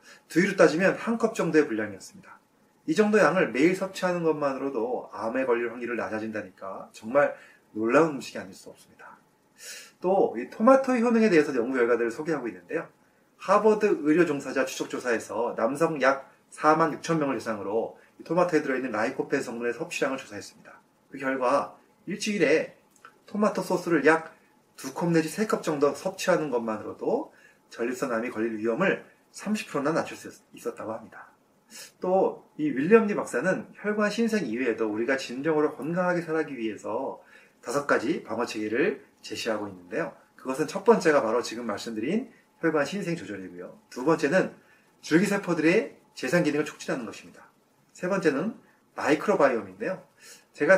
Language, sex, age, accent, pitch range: Korean, male, 30-49, native, 130-200 Hz